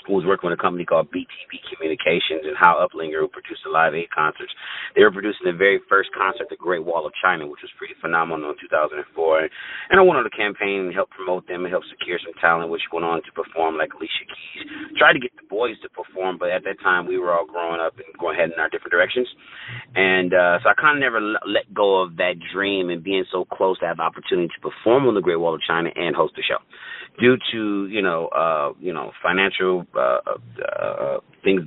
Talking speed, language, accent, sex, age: 235 wpm, English, American, male, 30-49